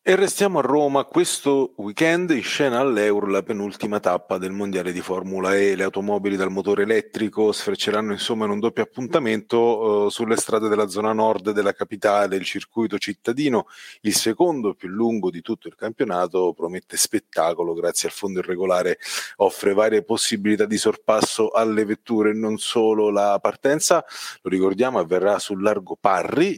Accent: native